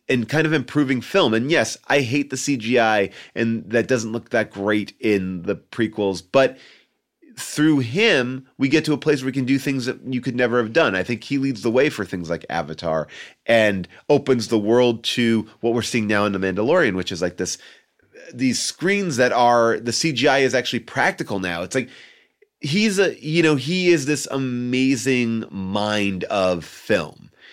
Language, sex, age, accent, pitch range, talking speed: English, male, 30-49, American, 95-130 Hz, 190 wpm